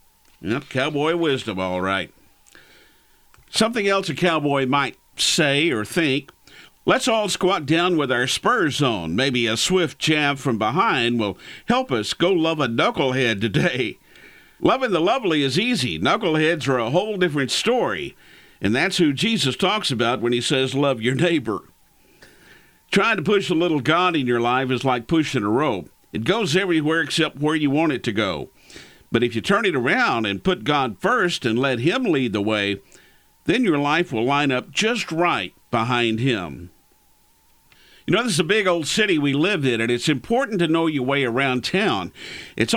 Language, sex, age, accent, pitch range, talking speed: English, male, 50-69, American, 125-175 Hz, 180 wpm